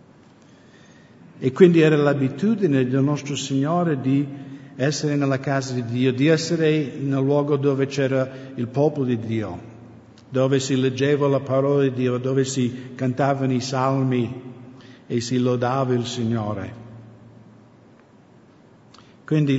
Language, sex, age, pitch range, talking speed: English, male, 50-69, 125-150 Hz, 125 wpm